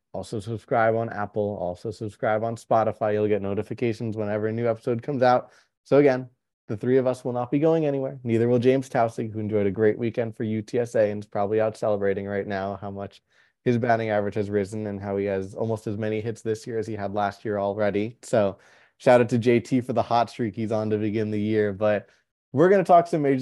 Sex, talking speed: male, 235 wpm